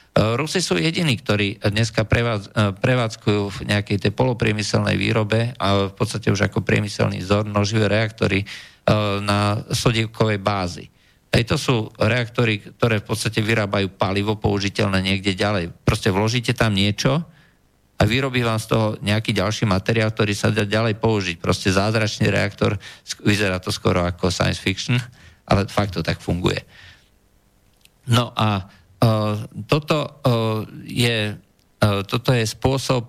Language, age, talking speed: Slovak, 50-69, 140 wpm